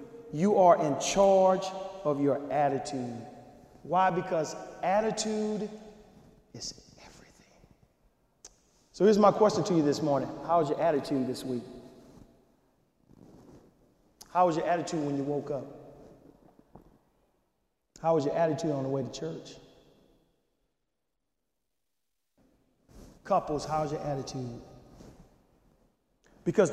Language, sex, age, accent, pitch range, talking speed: English, male, 40-59, American, 145-235 Hz, 110 wpm